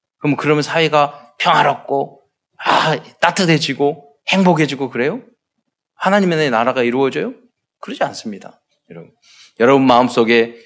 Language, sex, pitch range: Korean, male, 140-235 Hz